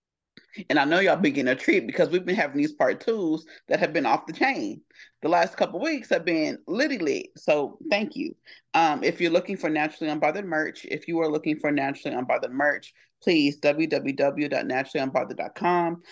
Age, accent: 30-49, American